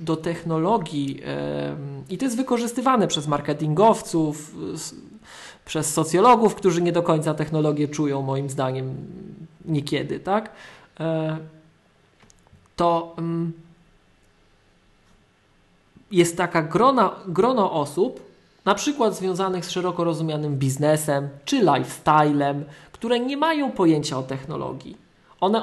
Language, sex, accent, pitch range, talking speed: Polish, male, native, 150-180 Hz, 110 wpm